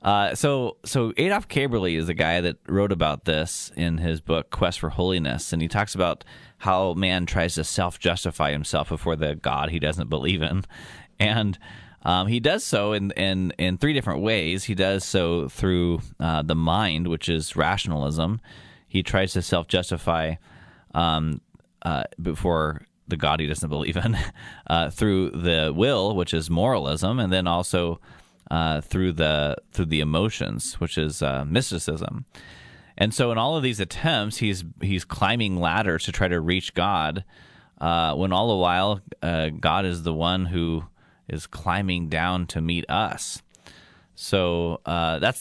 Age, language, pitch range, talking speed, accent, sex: 20-39, English, 80-100 Hz, 165 wpm, American, male